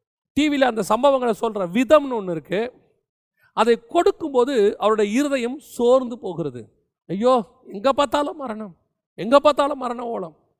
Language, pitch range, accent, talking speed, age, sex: Tamil, 210-280 Hz, native, 110 wpm, 40-59, male